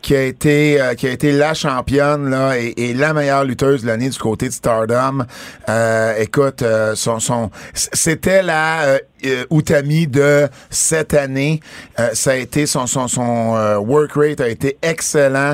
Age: 50-69